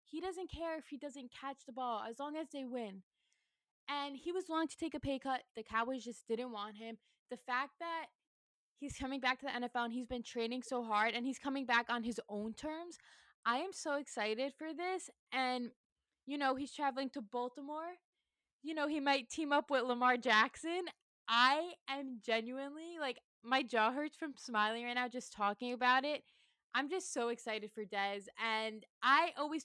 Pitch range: 220-285 Hz